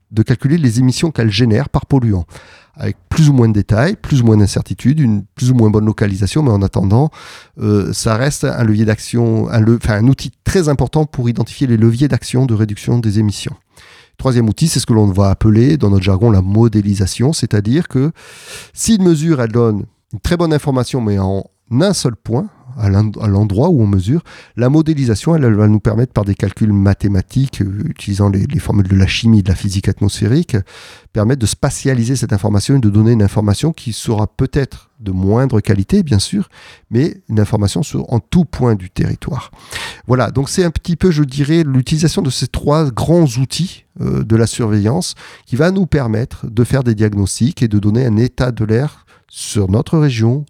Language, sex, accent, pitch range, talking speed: French, male, French, 105-135 Hz, 200 wpm